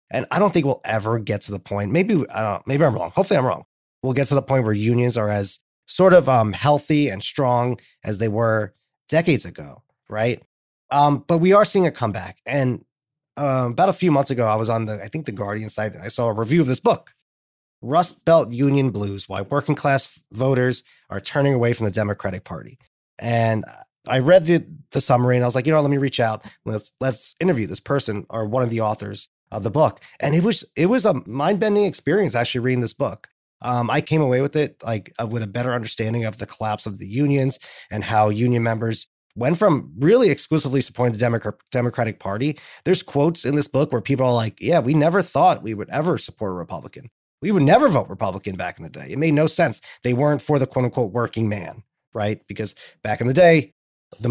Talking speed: 225 wpm